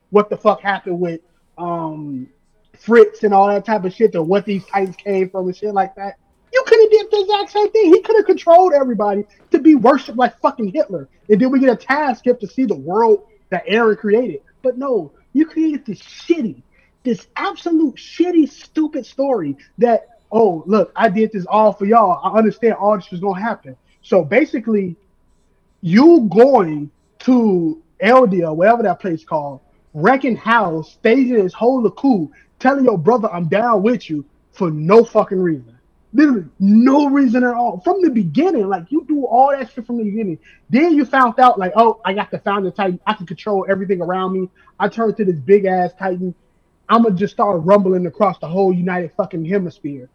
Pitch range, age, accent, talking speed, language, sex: 185-255 Hz, 20-39, American, 195 wpm, English, male